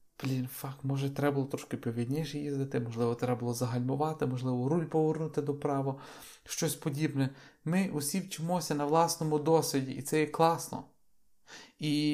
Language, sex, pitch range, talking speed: Ukrainian, male, 140-160 Hz, 150 wpm